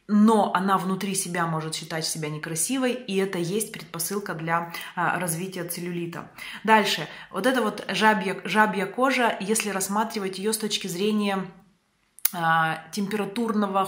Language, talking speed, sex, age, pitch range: Russian, 125 wpm, female, 20-39, 180-220 Hz